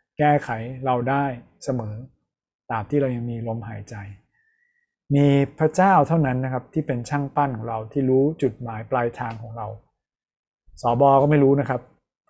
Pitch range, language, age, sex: 120-145 Hz, Thai, 20-39, male